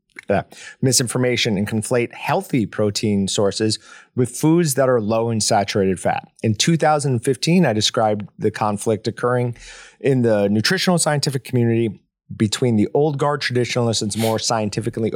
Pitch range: 110-135 Hz